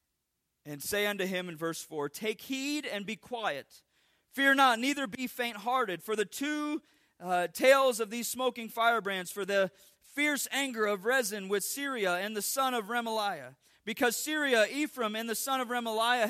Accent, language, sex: American, English, male